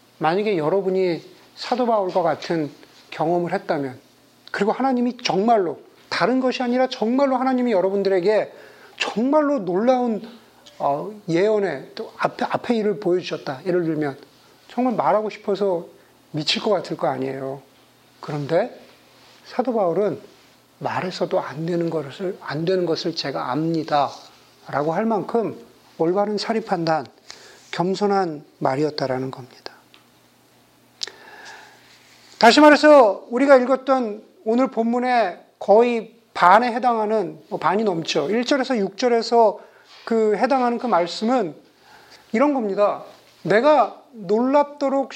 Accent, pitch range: native, 170-245 Hz